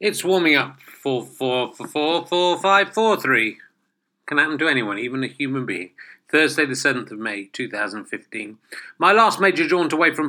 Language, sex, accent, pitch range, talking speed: English, male, British, 120-155 Hz, 190 wpm